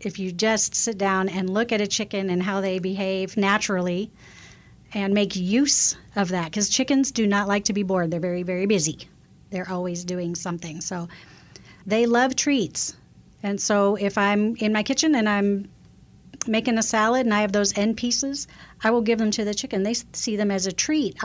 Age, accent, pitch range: 40-59, American, 180-220 Hz